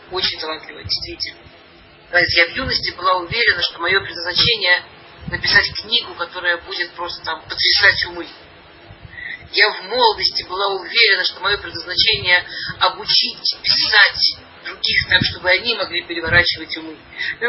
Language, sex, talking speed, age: Russian, male, 125 wpm, 40-59